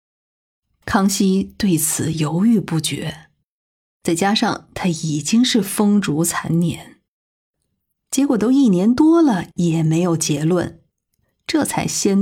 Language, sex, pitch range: Chinese, female, 160-220 Hz